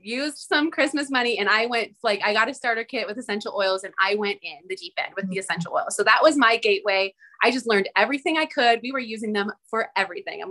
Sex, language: female, English